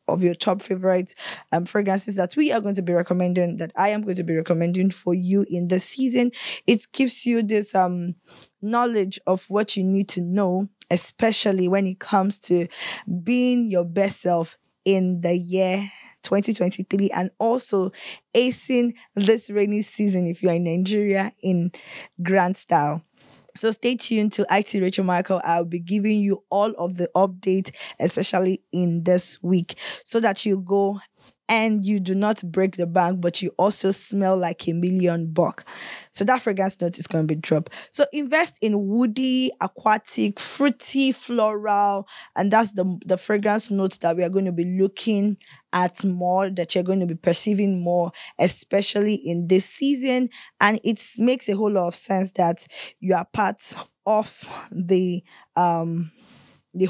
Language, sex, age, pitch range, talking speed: English, female, 10-29, 180-215 Hz, 170 wpm